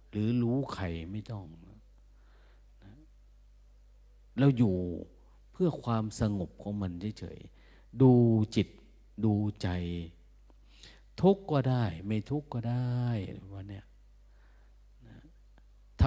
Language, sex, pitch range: Thai, male, 90-115 Hz